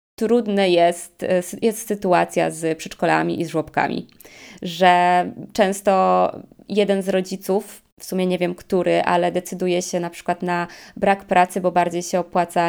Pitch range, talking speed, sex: 180-220 Hz, 145 wpm, female